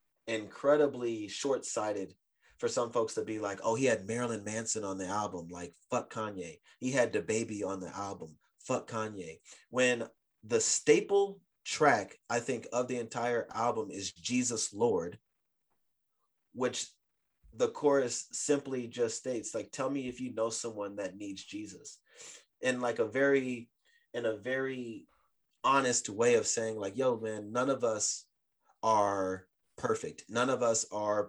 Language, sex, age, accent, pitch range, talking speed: English, male, 30-49, American, 110-140 Hz, 150 wpm